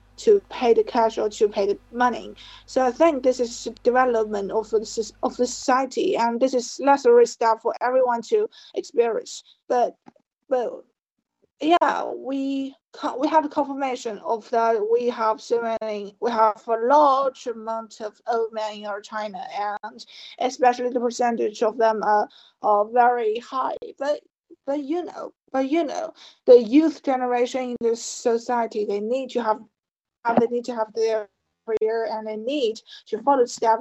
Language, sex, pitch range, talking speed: English, female, 225-280 Hz, 170 wpm